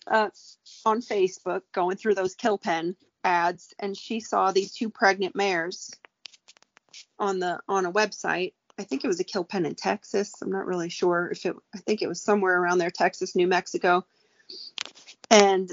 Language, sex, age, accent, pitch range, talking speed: English, female, 30-49, American, 175-205 Hz, 180 wpm